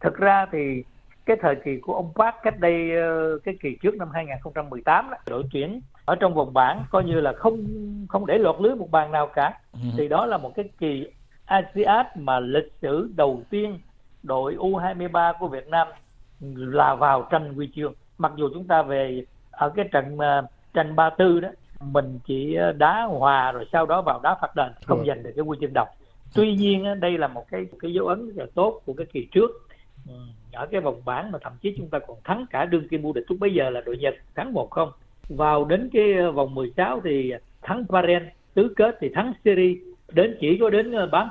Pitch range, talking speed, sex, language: 135-180 Hz, 210 wpm, male, Vietnamese